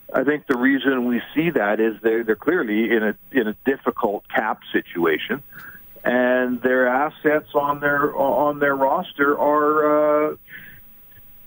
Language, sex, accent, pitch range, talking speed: English, male, American, 120-150 Hz, 145 wpm